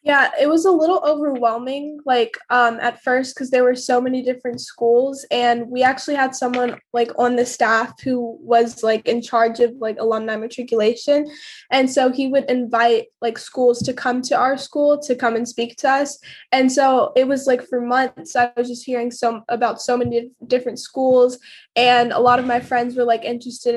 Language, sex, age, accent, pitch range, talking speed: English, female, 10-29, American, 235-260 Hz, 200 wpm